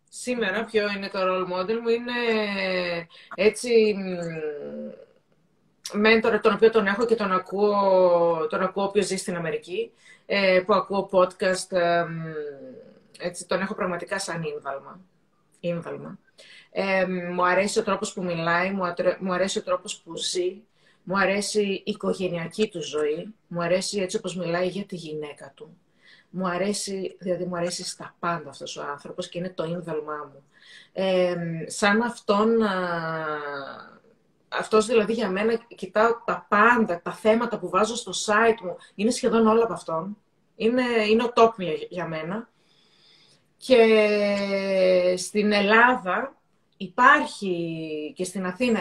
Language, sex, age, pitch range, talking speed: Greek, female, 30-49, 175-210 Hz, 140 wpm